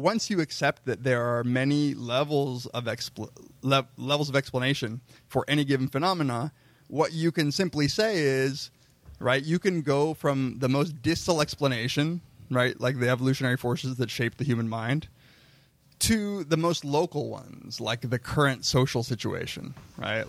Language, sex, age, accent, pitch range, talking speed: English, male, 20-39, American, 120-140 Hz, 160 wpm